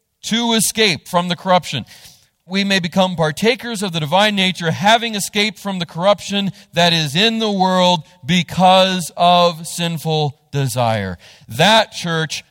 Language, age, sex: English, 40-59, male